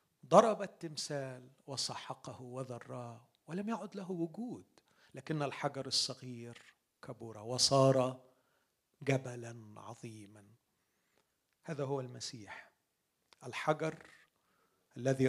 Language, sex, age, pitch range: Arabic, male, 40-59, 135-220 Hz